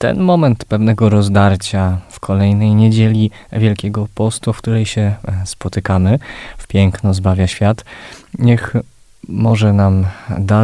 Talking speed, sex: 120 wpm, male